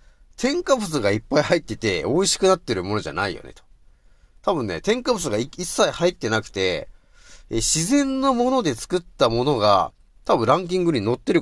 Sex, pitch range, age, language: male, 95-150 Hz, 40-59, Japanese